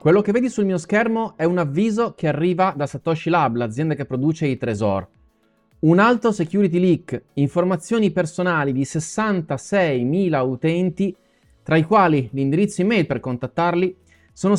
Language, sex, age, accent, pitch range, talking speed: Italian, male, 30-49, native, 140-195 Hz, 150 wpm